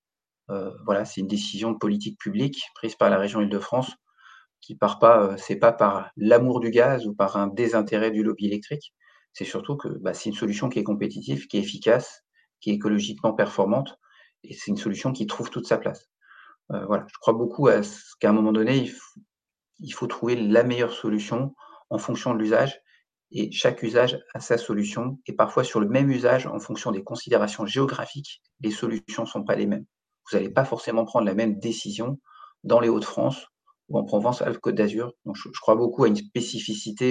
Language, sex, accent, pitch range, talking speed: French, male, French, 105-125 Hz, 200 wpm